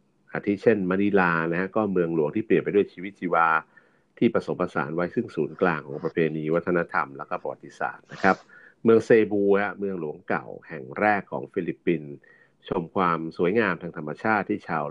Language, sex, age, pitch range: Thai, male, 60-79, 80-105 Hz